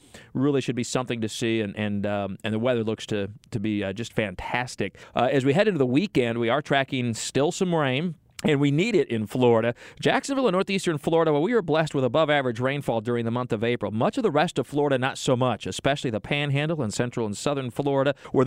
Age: 40-59